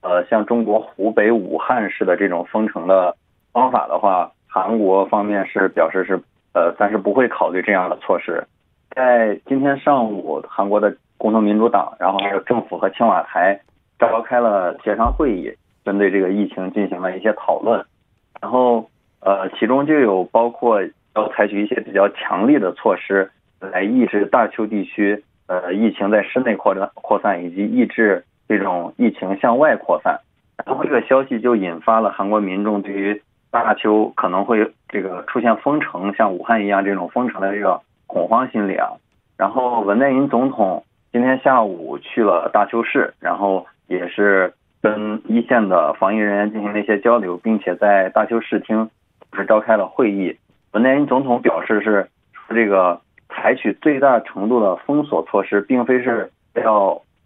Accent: Chinese